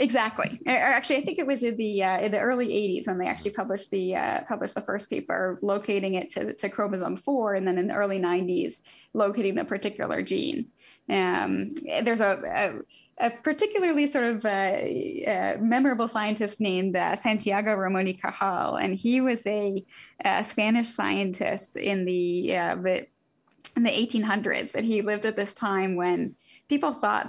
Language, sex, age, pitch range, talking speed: English, female, 10-29, 195-235 Hz, 175 wpm